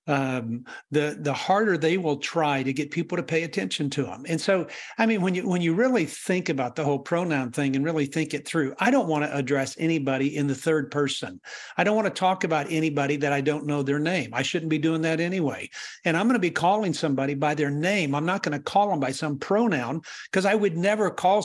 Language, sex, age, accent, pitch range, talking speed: English, male, 50-69, American, 145-185 Hz, 245 wpm